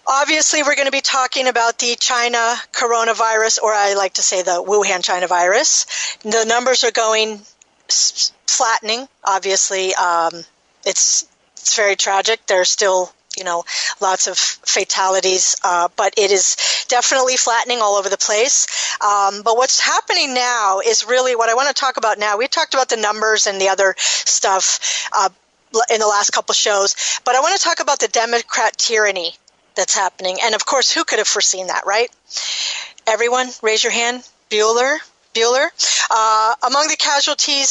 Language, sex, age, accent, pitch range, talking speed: English, female, 40-59, American, 210-270 Hz, 170 wpm